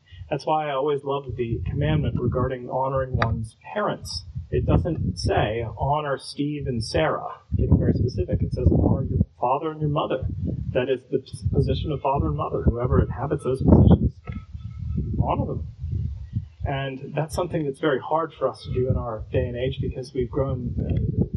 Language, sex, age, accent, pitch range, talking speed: English, male, 40-59, American, 115-145 Hz, 175 wpm